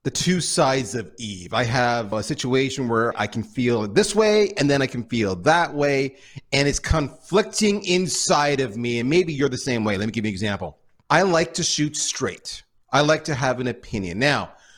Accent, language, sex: American, English, male